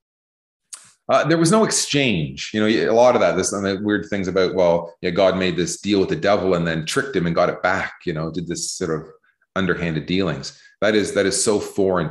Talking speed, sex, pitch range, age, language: 240 wpm, male, 85-110 Hz, 30-49, English